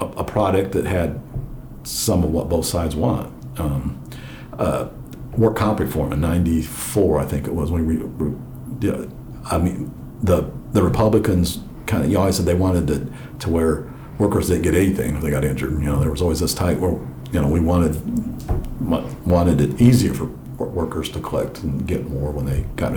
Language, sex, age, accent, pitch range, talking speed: English, male, 50-69, American, 80-110 Hz, 195 wpm